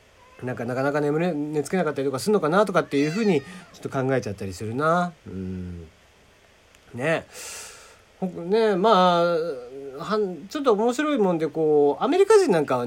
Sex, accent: male, native